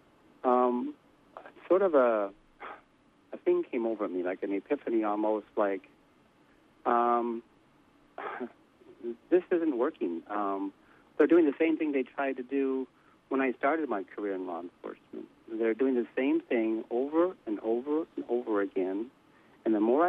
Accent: American